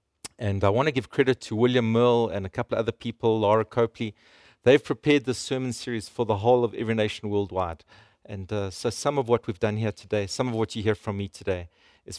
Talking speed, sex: 235 wpm, male